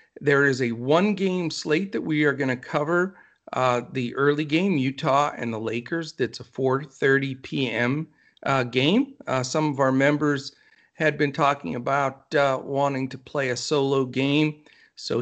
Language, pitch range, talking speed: English, 125-150 Hz, 165 wpm